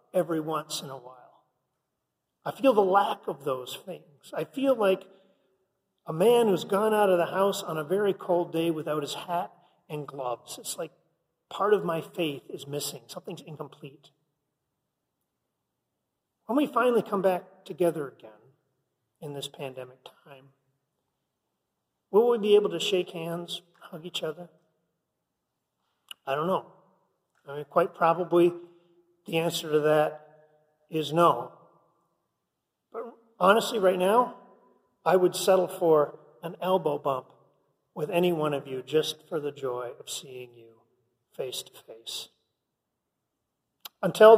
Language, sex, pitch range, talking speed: English, male, 155-195 Hz, 140 wpm